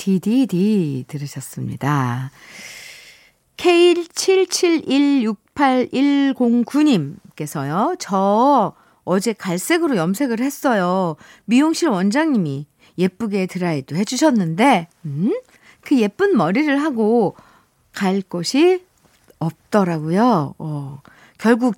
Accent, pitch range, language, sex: native, 185-275 Hz, Korean, female